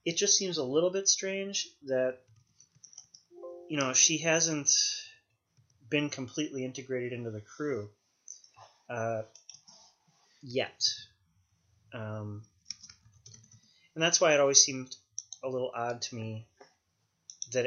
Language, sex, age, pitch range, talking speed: English, male, 30-49, 110-150 Hz, 110 wpm